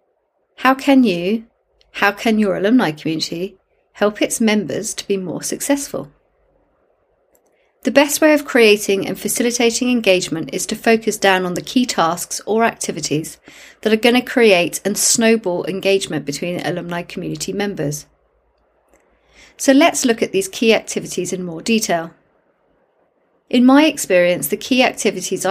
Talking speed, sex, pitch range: 145 wpm, female, 180-245 Hz